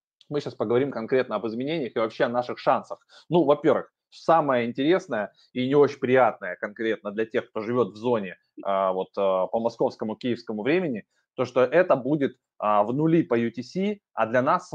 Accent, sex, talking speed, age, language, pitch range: native, male, 175 wpm, 20-39, Russian, 115-165 Hz